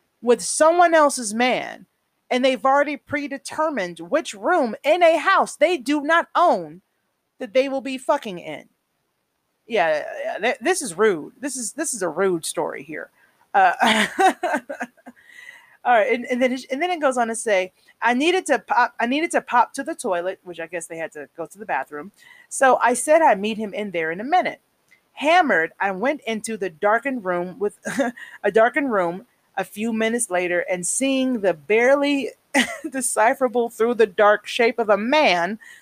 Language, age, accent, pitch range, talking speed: English, 30-49, American, 215-315 Hz, 180 wpm